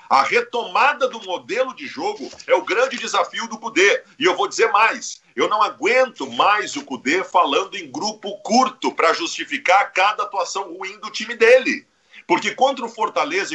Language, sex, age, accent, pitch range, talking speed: Portuguese, male, 50-69, Brazilian, 210-290 Hz, 175 wpm